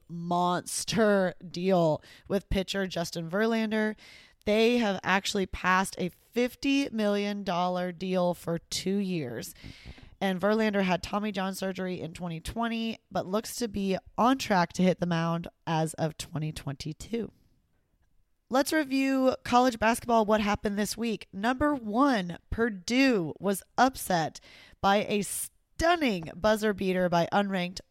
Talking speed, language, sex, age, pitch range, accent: 125 wpm, English, female, 20-39, 180-225 Hz, American